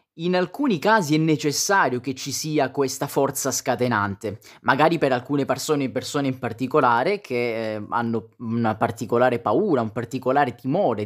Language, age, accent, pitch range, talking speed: Italian, 20-39, native, 125-165 Hz, 140 wpm